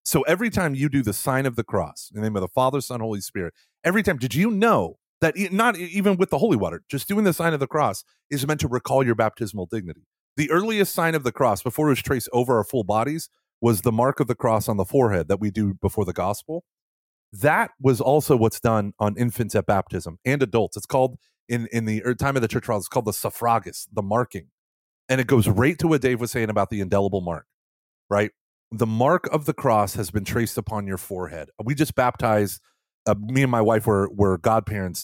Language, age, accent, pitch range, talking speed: English, 30-49, American, 100-130 Hz, 235 wpm